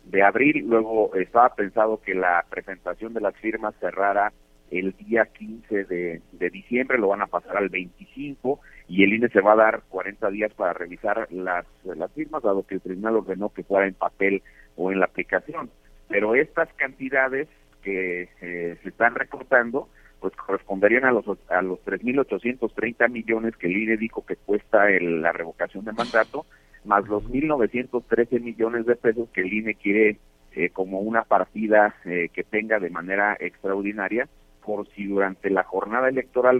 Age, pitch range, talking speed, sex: 50-69, 95-120 Hz, 170 wpm, male